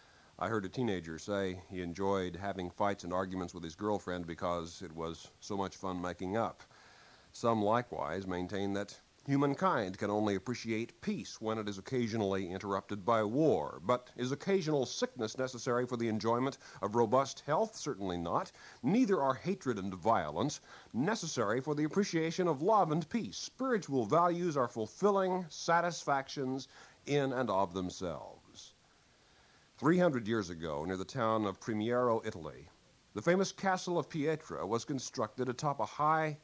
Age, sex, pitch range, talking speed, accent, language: 50-69, male, 100-155 Hz, 150 wpm, American, English